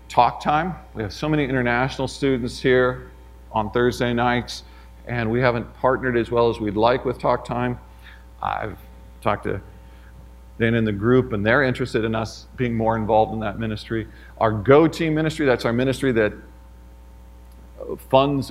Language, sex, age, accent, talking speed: English, male, 50-69, American, 165 wpm